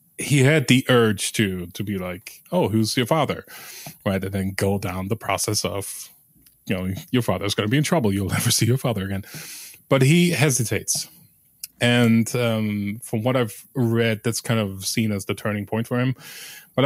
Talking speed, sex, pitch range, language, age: 195 wpm, male, 105-130 Hz, English, 20-39